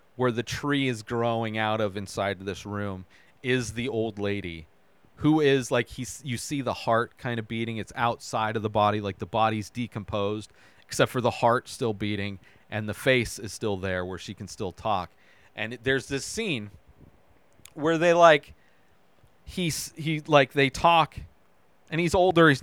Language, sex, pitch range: English, male, 105-150 Hz